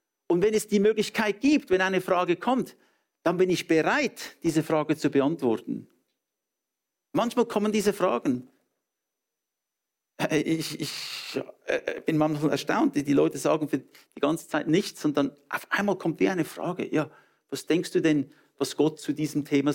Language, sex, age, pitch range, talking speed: English, male, 50-69, 135-180 Hz, 160 wpm